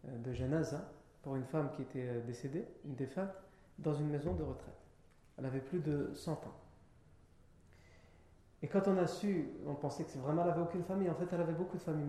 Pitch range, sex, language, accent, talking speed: 125-180 Hz, male, French, French, 210 wpm